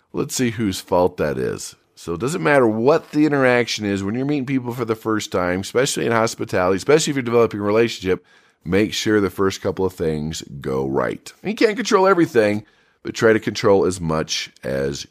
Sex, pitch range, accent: male, 105-155 Hz, American